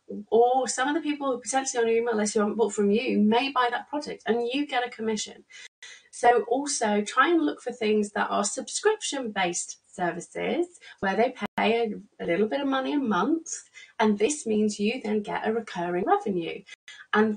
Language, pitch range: English, 205-265 Hz